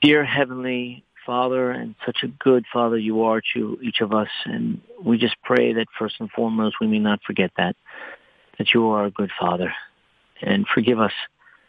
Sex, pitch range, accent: male, 105-120 Hz, American